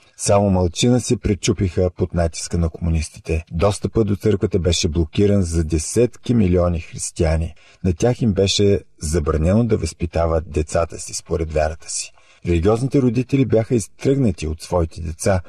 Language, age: Bulgarian, 50-69